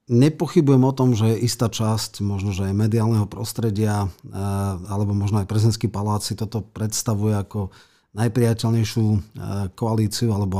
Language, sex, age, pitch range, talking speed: Slovak, male, 40-59, 100-115 Hz, 130 wpm